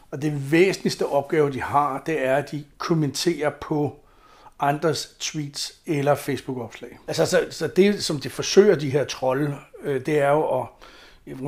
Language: Danish